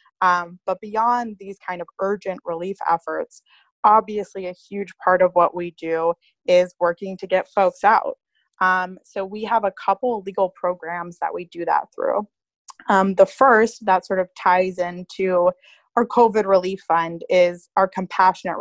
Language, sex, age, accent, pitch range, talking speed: English, female, 20-39, American, 170-200 Hz, 160 wpm